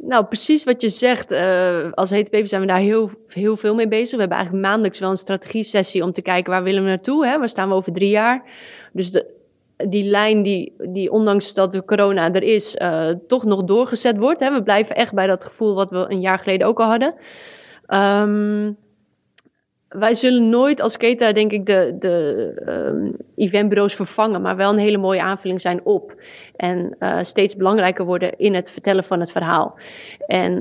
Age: 30-49